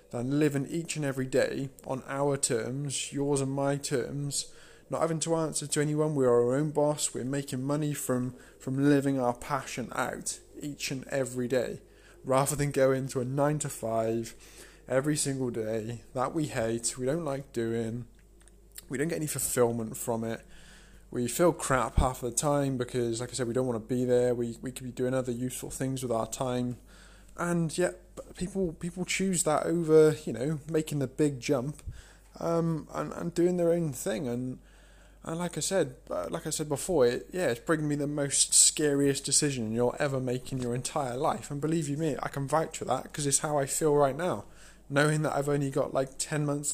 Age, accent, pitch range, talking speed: 20-39, British, 125-155 Hz, 200 wpm